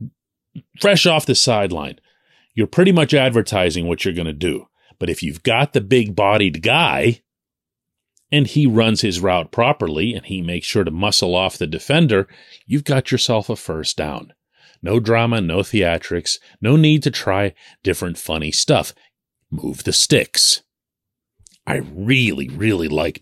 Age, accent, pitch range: 40-59, American, 90-125 Hz